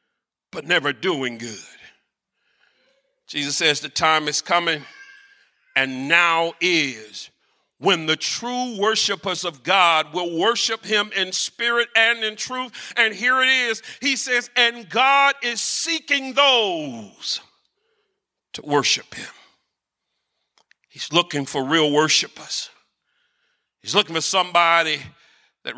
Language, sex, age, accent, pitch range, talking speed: English, male, 40-59, American, 175-260 Hz, 120 wpm